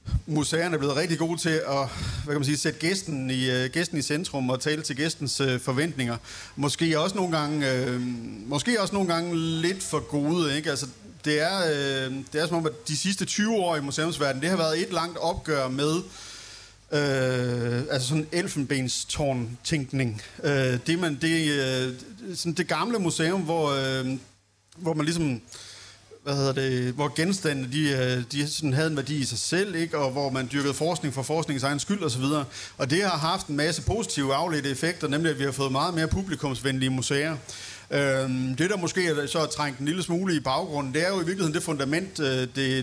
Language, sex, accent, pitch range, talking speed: Danish, male, native, 130-165 Hz, 195 wpm